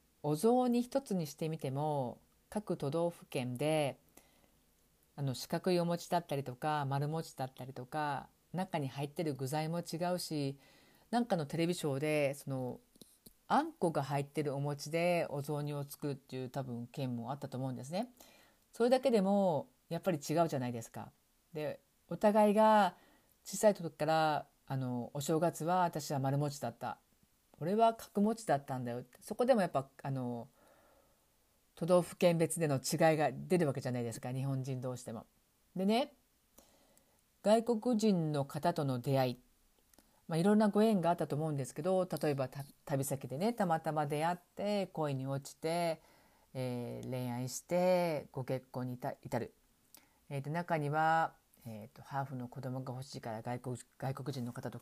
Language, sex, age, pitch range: Japanese, female, 50-69, 130-175 Hz